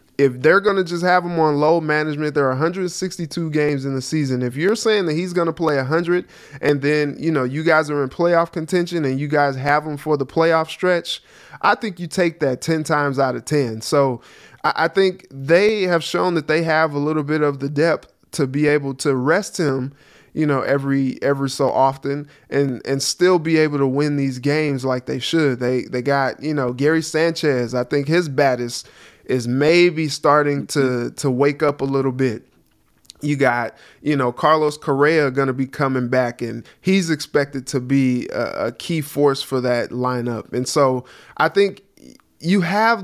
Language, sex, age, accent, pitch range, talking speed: English, male, 20-39, American, 135-160 Hz, 200 wpm